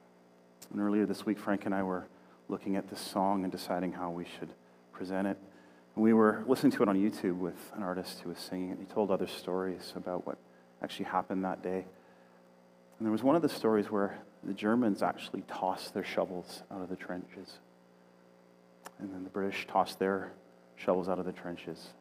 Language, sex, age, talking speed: English, male, 30-49, 200 wpm